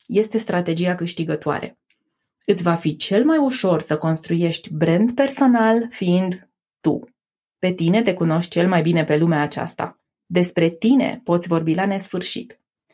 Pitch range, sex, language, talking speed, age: 175-240 Hz, female, Romanian, 145 wpm, 20-39